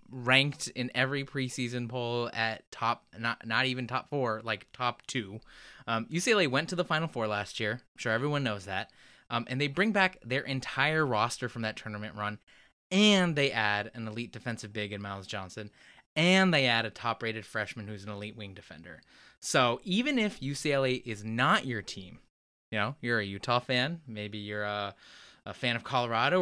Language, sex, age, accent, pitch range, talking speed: English, male, 20-39, American, 110-150 Hz, 190 wpm